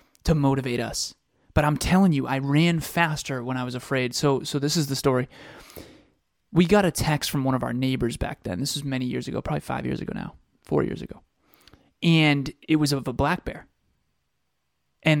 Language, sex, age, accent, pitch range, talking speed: English, male, 20-39, American, 130-165 Hz, 205 wpm